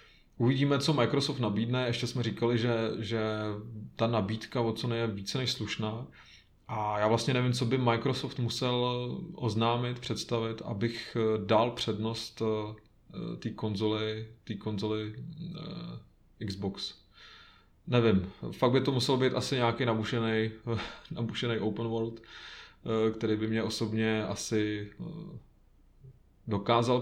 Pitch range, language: 110-120 Hz, Czech